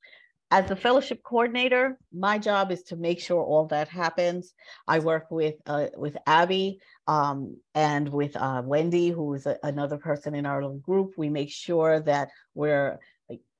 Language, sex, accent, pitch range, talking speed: English, female, American, 150-185 Hz, 170 wpm